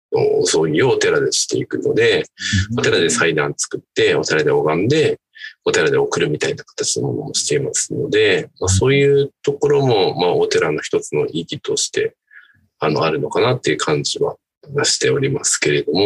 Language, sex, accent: Japanese, male, native